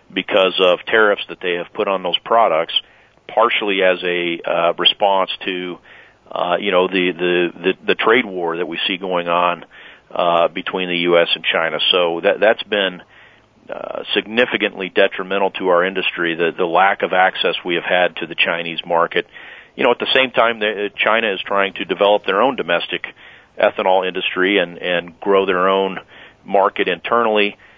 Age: 40-59